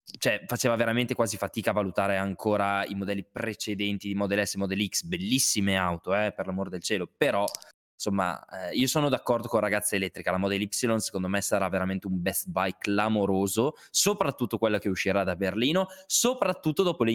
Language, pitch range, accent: Italian, 100-130 Hz, native